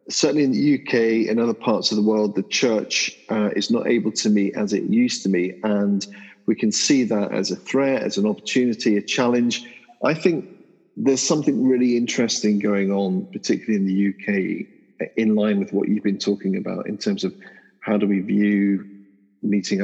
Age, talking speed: 40-59, 195 wpm